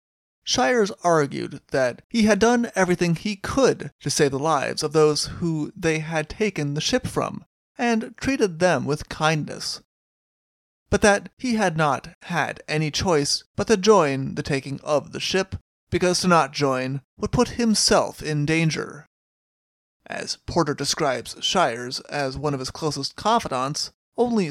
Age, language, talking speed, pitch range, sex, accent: 30-49, English, 155 wpm, 145-190 Hz, male, American